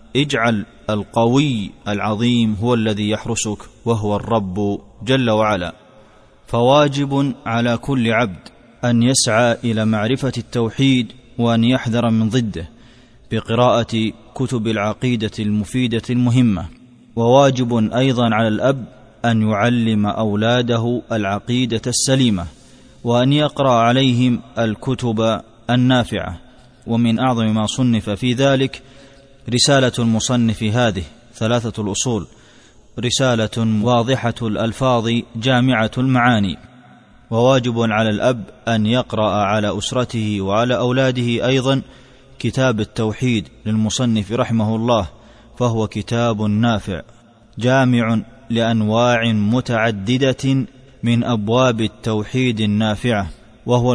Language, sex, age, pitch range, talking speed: Arabic, male, 20-39, 110-125 Hz, 95 wpm